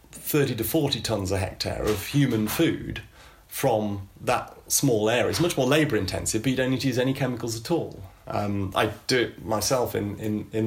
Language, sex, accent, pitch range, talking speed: Dutch, male, British, 100-130 Hz, 195 wpm